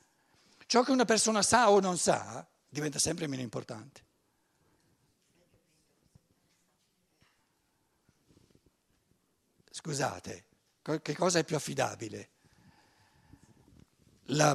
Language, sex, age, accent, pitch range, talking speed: Italian, male, 60-79, native, 145-200 Hz, 80 wpm